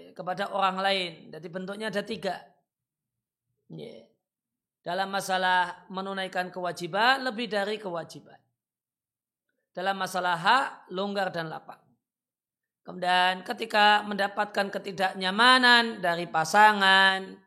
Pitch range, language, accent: 180-215 Hz, Indonesian, native